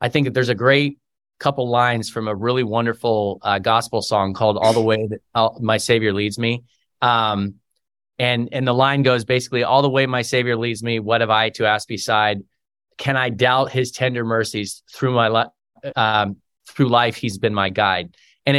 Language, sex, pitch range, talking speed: English, male, 110-140 Hz, 200 wpm